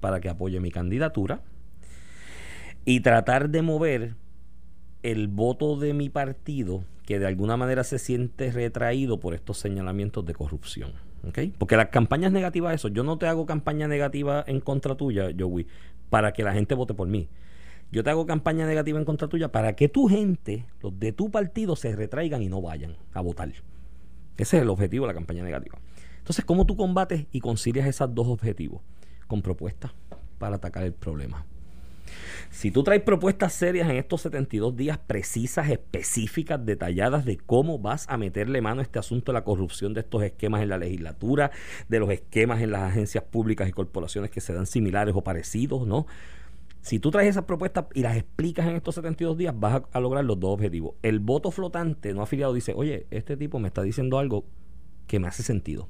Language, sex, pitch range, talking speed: Spanish, male, 95-145 Hz, 190 wpm